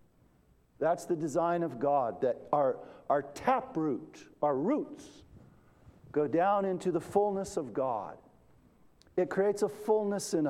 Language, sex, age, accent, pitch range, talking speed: English, male, 50-69, American, 135-180 Hz, 130 wpm